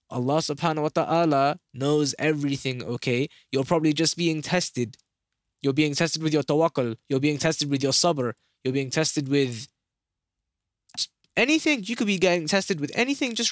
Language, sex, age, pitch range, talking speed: English, male, 20-39, 145-225 Hz, 165 wpm